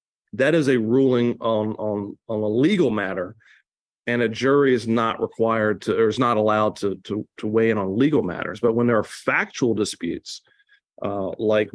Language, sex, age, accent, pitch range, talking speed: English, male, 40-59, American, 110-135 Hz, 190 wpm